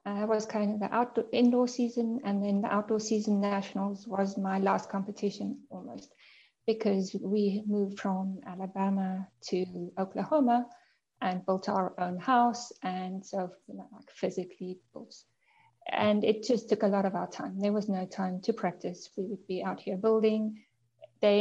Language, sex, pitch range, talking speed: English, female, 195-230 Hz, 165 wpm